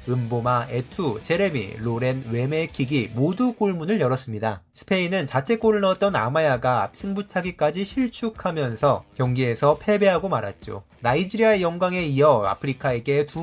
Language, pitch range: Korean, 125-180 Hz